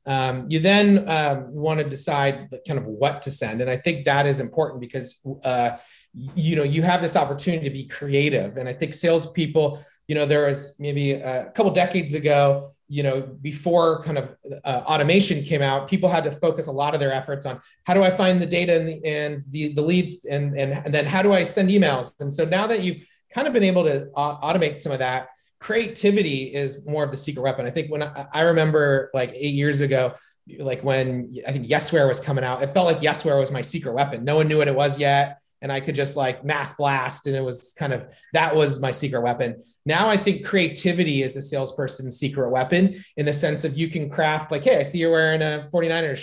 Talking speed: 235 wpm